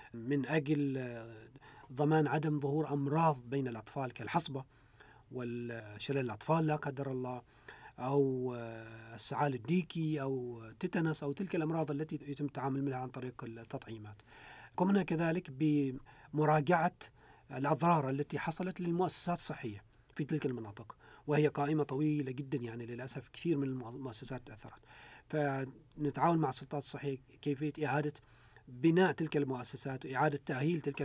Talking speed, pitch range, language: 120 wpm, 125-150 Hz, Arabic